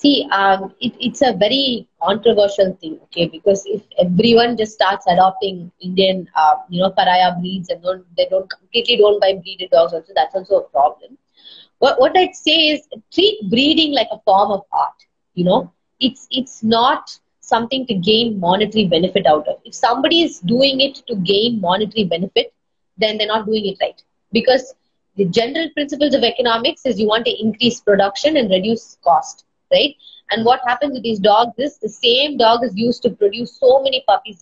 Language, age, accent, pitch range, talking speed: Tamil, 20-39, native, 195-265 Hz, 190 wpm